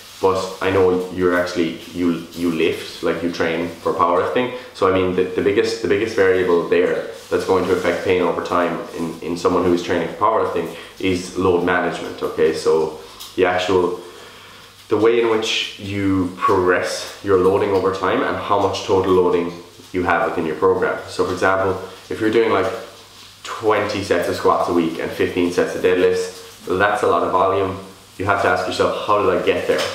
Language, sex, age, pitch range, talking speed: English, male, 20-39, 90-125 Hz, 200 wpm